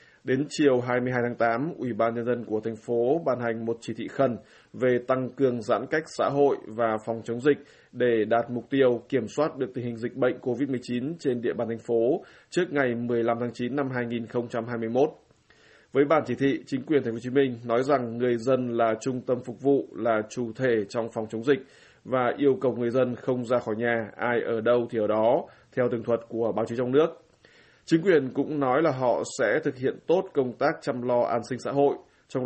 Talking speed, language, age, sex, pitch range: 225 wpm, Vietnamese, 20-39, male, 115-135 Hz